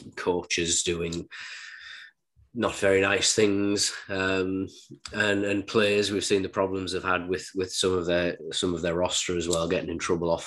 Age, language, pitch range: 30-49, English, 90-110 Hz